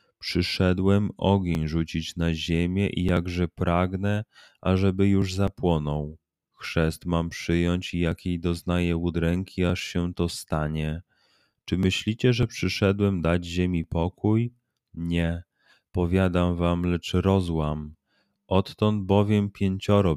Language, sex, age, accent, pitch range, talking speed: Polish, male, 30-49, native, 85-95 Hz, 110 wpm